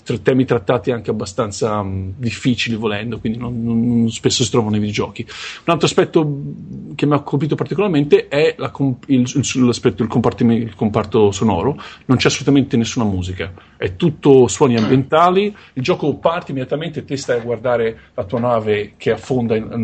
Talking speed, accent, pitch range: 175 wpm, native, 110-135 Hz